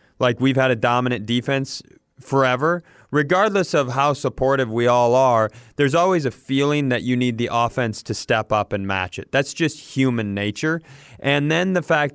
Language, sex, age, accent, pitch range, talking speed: English, male, 30-49, American, 120-145 Hz, 185 wpm